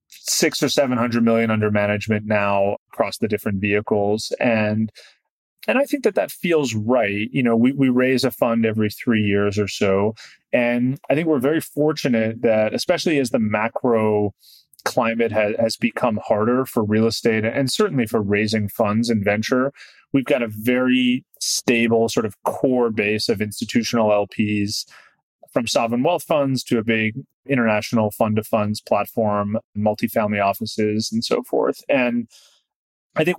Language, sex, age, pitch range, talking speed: English, male, 30-49, 110-130 Hz, 155 wpm